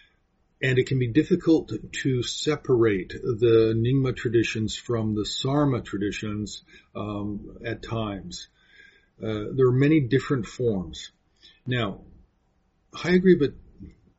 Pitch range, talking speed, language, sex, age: 110-135 Hz, 110 wpm, English, male, 50-69